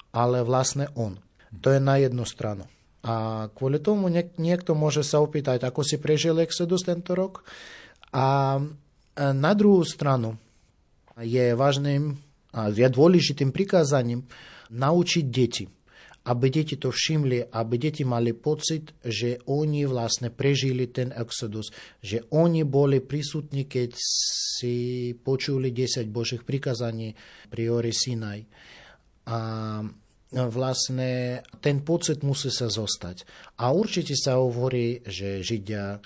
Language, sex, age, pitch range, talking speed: Slovak, male, 30-49, 110-145 Hz, 120 wpm